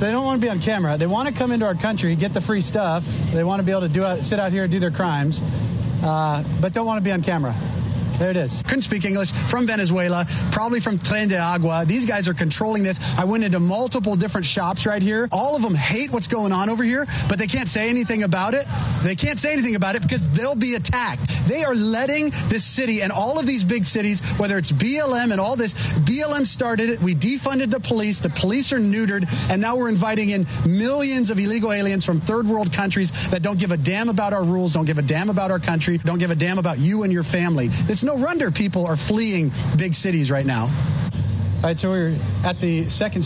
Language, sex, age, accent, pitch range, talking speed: English, male, 30-49, American, 150-205 Hz, 240 wpm